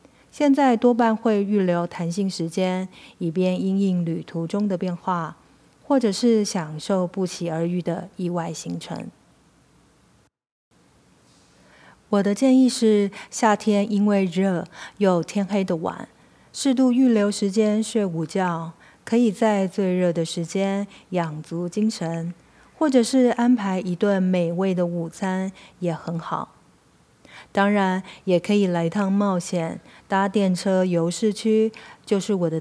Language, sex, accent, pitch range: Chinese, female, native, 175-215 Hz